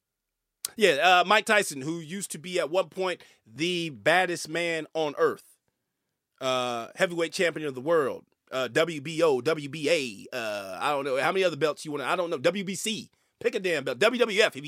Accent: American